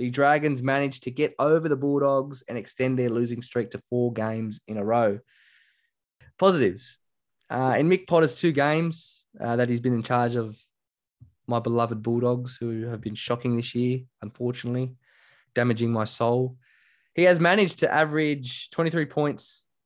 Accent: Australian